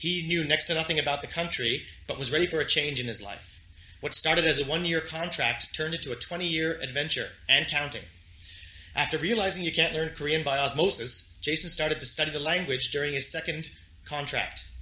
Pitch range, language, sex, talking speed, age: 120-160 Hz, English, male, 195 wpm, 30-49